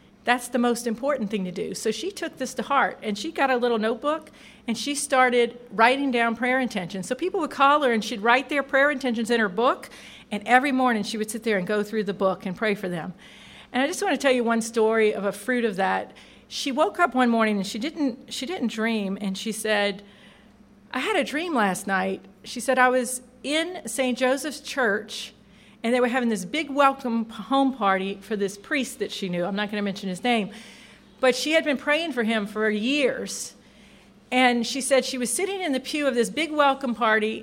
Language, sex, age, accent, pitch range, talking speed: English, female, 50-69, American, 210-260 Hz, 230 wpm